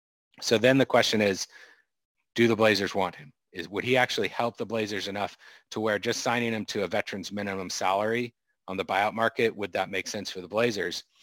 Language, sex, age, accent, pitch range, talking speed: English, male, 40-59, American, 100-120 Hz, 210 wpm